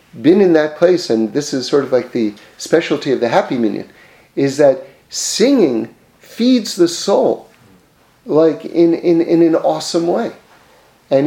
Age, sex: 40-59, male